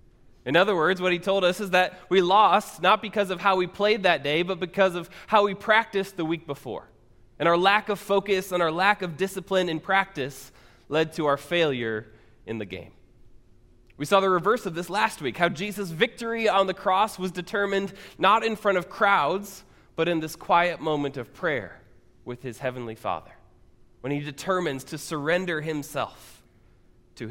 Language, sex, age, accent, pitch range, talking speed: English, male, 20-39, American, 120-190 Hz, 190 wpm